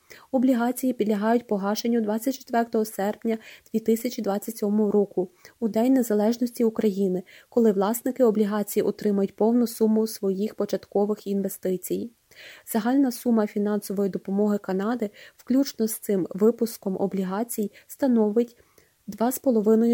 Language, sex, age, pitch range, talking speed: Ukrainian, female, 20-39, 195-225 Hz, 95 wpm